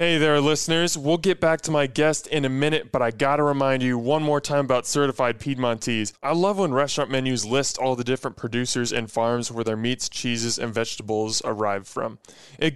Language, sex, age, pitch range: English, male, 20-39, 120-150 Hz